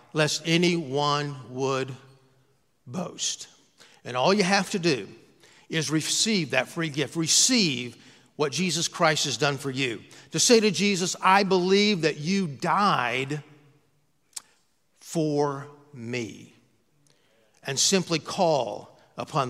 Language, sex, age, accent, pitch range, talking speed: English, male, 50-69, American, 145-200 Hz, 115 wpm